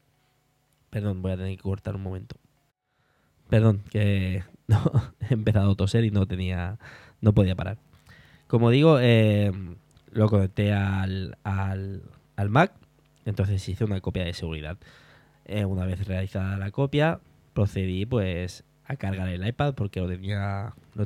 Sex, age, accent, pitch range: male, 20-39, Spanish, 95-115 Hz